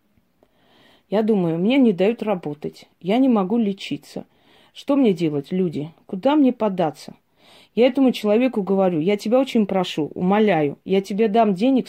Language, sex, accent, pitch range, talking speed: Russian, female, native, 190-245 Hz, 150 wpm